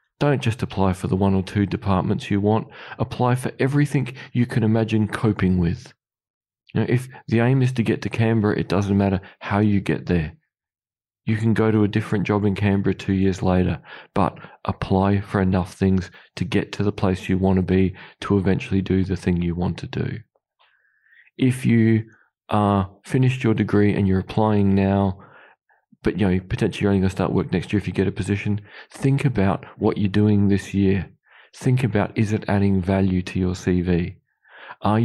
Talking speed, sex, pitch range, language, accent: 195 wpm, male, 95-110 Hz, English, Australian